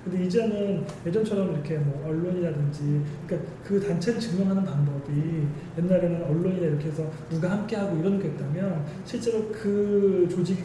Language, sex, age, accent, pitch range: Korean, male, 20-39, native, 155-200 Hz